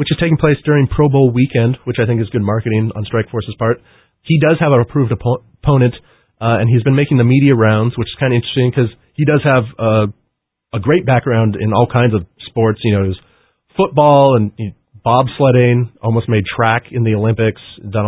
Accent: American